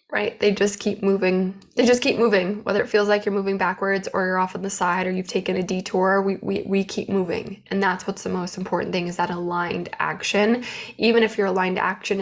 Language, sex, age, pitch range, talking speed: English, female, 20-39, 185-215 Hz, 235 wpm